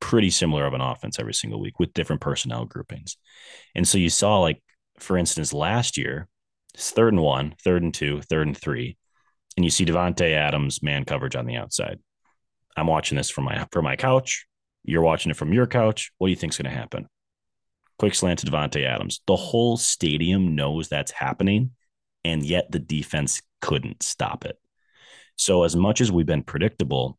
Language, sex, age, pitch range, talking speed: English, male, 30-49, 70-90 Hz, 195 wpm